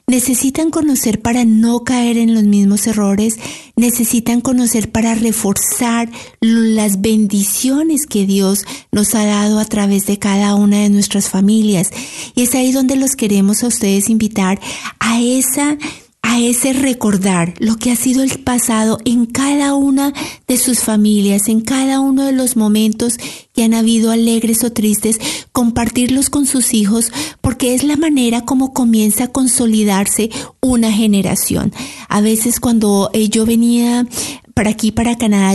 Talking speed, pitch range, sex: 150 wpm, 210-250 Hz, female